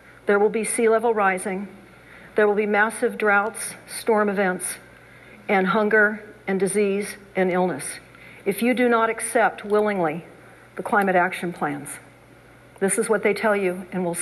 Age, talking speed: 60-79, 155 wpm